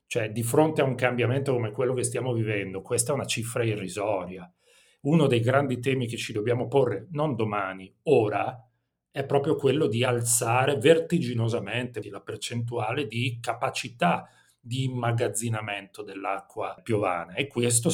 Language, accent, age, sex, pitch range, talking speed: Italian, native, 40-59, male, 105-130 Hz, 145 wpm